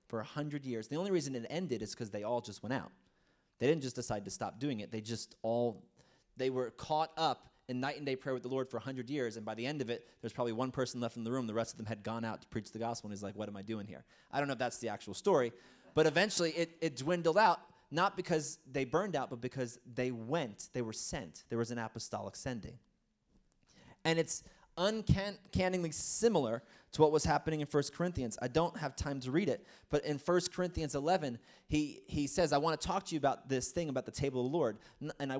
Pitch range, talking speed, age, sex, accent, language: 120-170 Hz, 255 wpm, 20-39, male, American, English